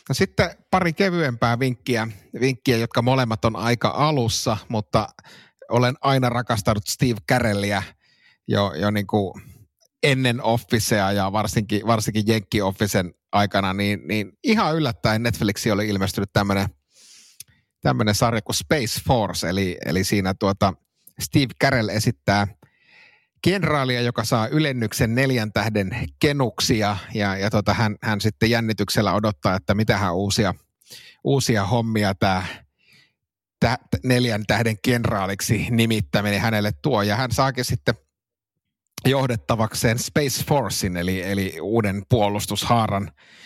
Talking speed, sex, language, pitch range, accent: 120 wpm, male, Finnish, 100-125 Hz, native